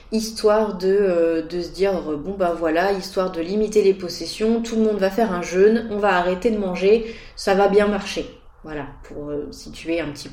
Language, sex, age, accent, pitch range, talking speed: French, female, 30-49, French, 160-215 Hz, 205 wpm